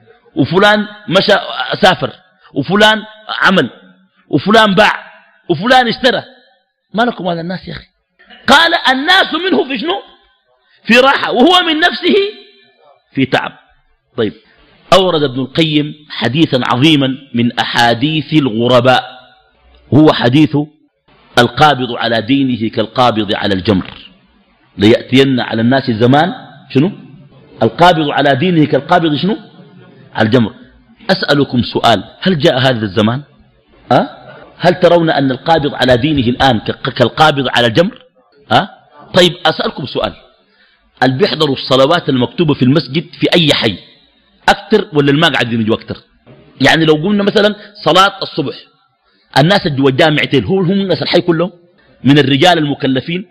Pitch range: 135-210 Hz